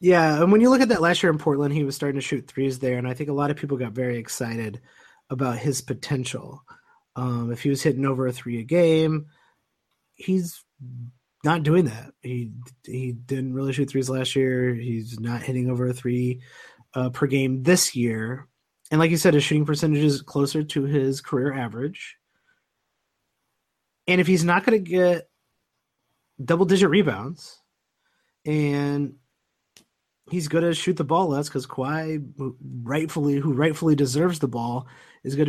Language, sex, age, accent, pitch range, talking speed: English, male, 30-49, American, 135-170 Hz, 175 wpm